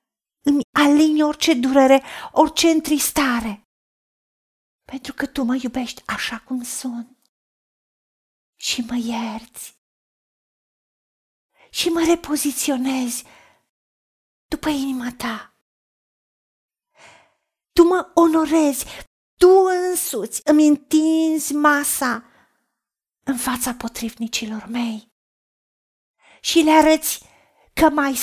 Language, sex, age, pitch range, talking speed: Romanian, female, 40-59, 250-320 Hz, 85 wpm